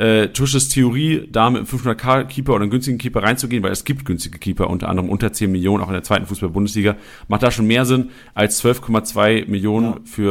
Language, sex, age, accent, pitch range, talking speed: German, male, 40-59, German, 95-125 Hz, 210 wpm